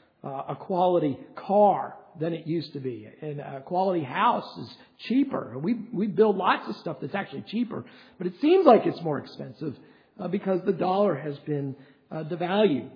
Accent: American